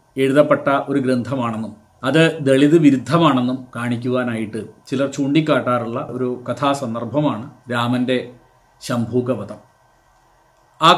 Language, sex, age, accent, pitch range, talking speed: Malayalam, male, 40-59, native, 125-160 Hz, 75 wpm